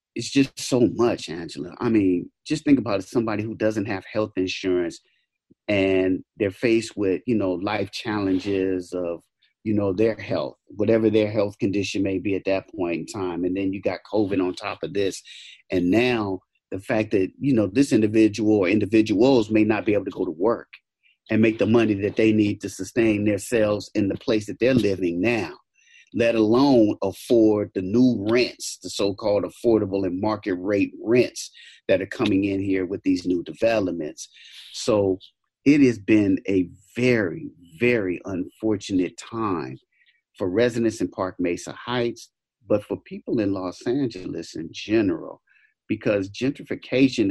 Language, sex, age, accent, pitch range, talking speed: English, male, 30-49, American, 95-115 Hz, 165 wpm